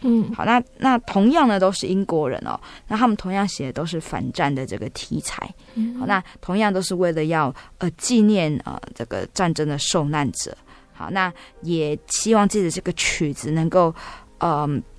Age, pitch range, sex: 20-39, 155-190 Hz, female